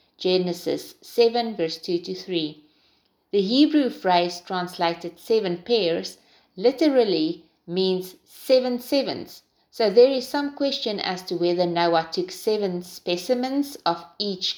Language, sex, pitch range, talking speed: English, female, 170-220 Hz, 125 wpm